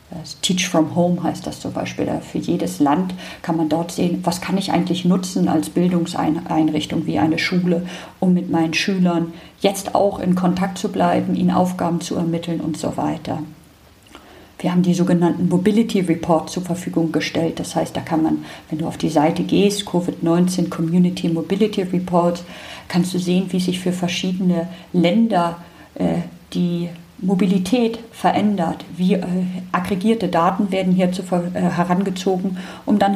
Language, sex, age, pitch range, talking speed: German, female, 50-69, 165-185 Hz, 150 wpm